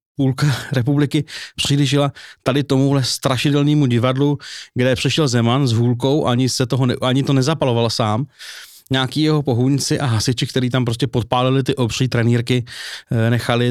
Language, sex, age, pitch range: Czech, male, 30-49, 120-140 Hz